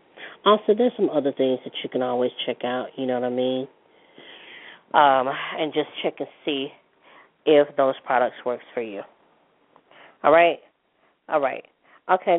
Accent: American